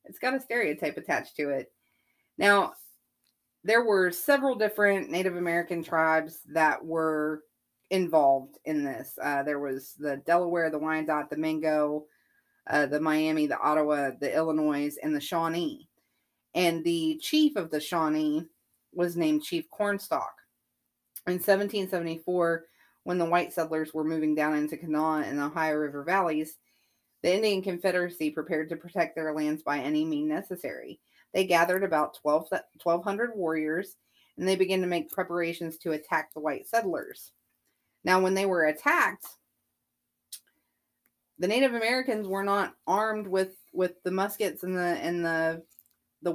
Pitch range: 155-190 Hz